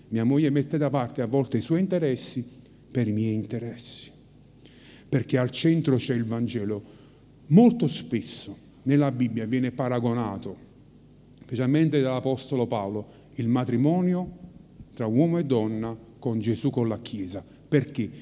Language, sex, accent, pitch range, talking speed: Italian, male, native, 120-165 Hz, 135 wpm